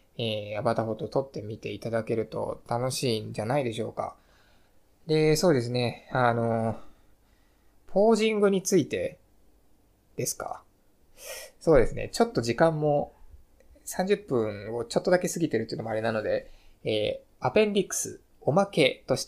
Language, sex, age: Japanese, male, 20-39